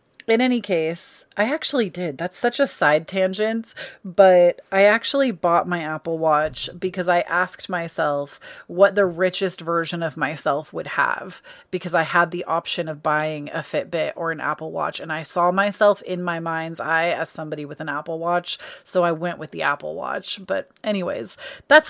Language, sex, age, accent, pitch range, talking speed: English, female, 30-49, American, 170-225 Hz, 185 wpm